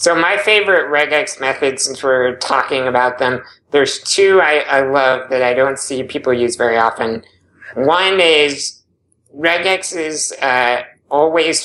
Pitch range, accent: 120-150 Hz, American